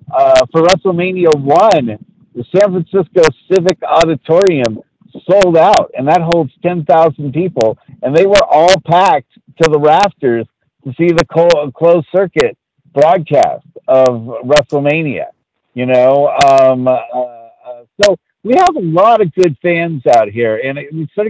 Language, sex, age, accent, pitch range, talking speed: English, male, 50-69, American, 130-165 Hz, 140 wpm